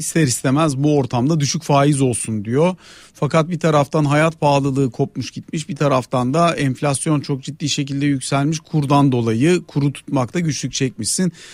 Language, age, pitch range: Turkish, 40-59, 140-200 Hz